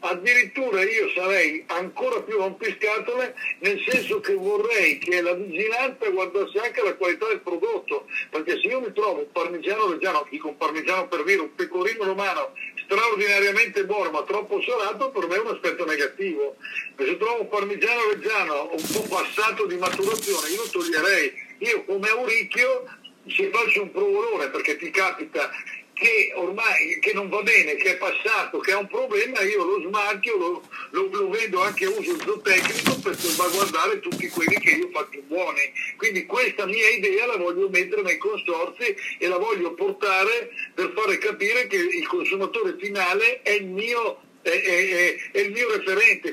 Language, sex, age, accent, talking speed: Italian, male, 60-79, native, 170 wpm